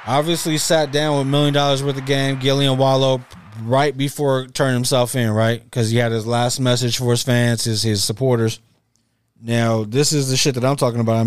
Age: 20-39